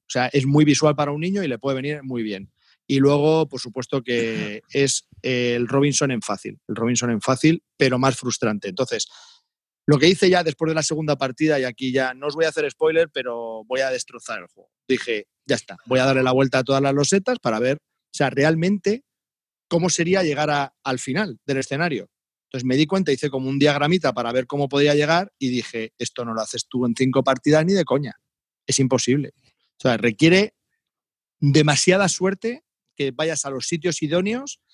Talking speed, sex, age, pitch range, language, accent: 205 wpm, male, 30-49, 125-160 Hz, Spanish, Spanish